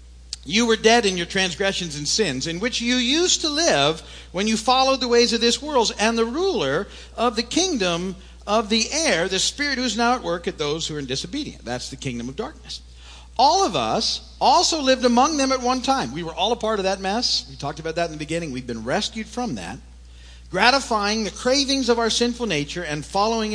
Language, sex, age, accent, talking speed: English, male, 50-69, American, 225 wpm